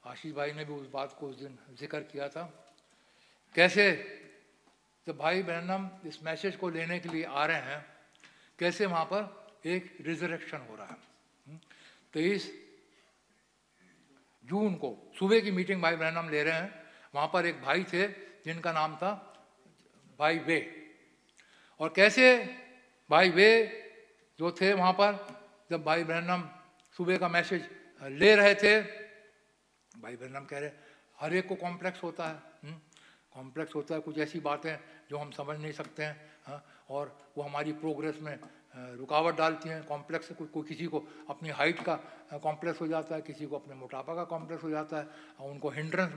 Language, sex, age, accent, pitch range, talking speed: English, male, 60-79, Indian, 150-185 Hz, 155 wpm